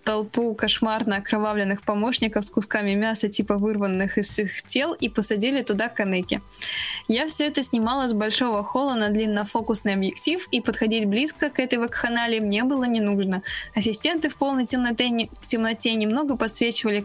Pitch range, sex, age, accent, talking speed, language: 215-265 Hz, female, 20-39, native, 150 wpm, Russian